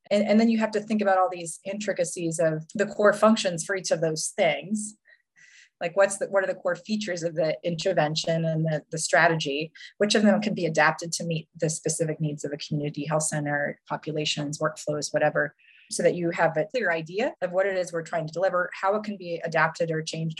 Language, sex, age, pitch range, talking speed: English, female, 30-49, 155-190 Hz, 225 wpm